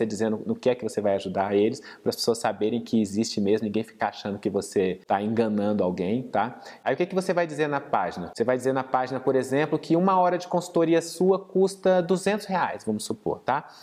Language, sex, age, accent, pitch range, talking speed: Portuguese, male, 20-39, Brazilian, 130-180 Hz, 235 wpm